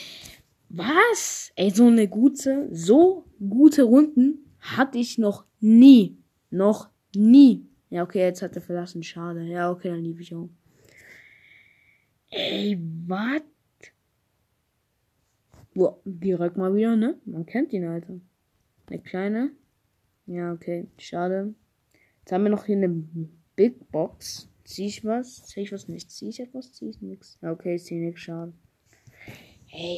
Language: German